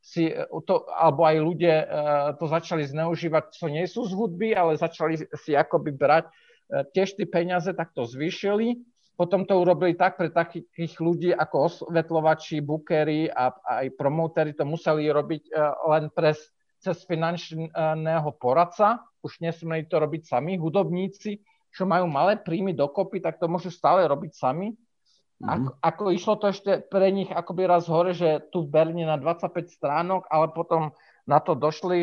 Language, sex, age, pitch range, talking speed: Slovak, male, 40-59, 155-185 Hz, 155 wpm